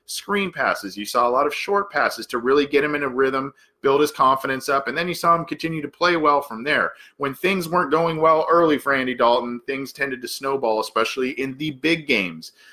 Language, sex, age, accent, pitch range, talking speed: English, male, 40-59, American, 120-165 Hz, 230 wpm